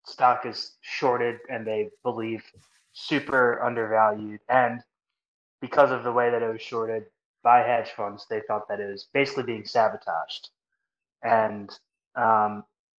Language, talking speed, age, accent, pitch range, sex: English, 140 wpm, 20-39, American, 110-130 Hz, male